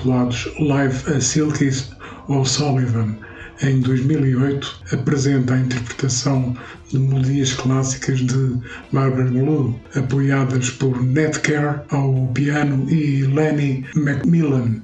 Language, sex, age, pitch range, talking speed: Portuguese, male, 60-79, 125-145 Hz, 100 wpm